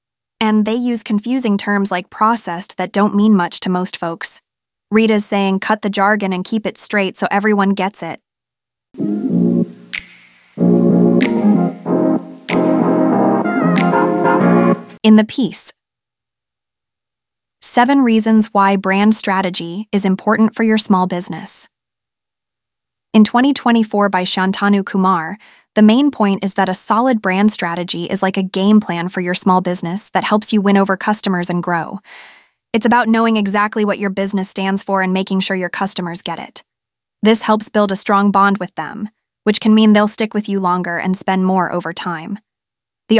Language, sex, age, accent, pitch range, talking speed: English, female, 20-39, American, 180-215 Hz, 155 wpm